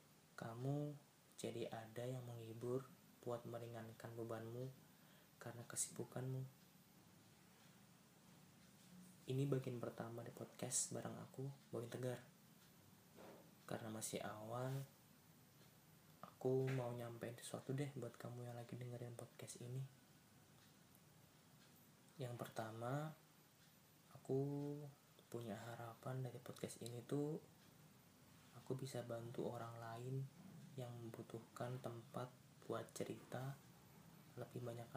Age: 20-39